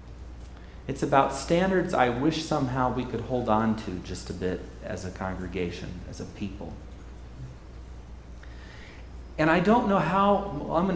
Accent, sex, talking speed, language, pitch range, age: American, male, 155 wpm, English, 95-165 Hz, 40-59